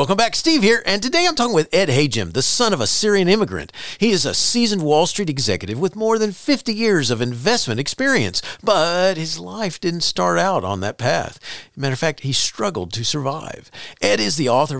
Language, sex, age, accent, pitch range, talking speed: English, male, 50-69, American, 135-215 Hz, 215 wpm